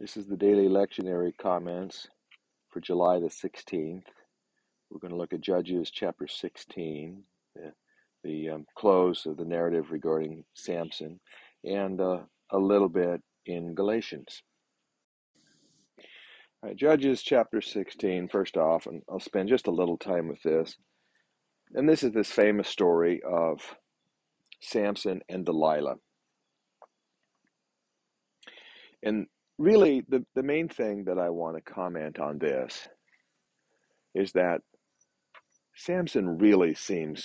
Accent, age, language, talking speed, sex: American, 50-69, English, 125 wpm, male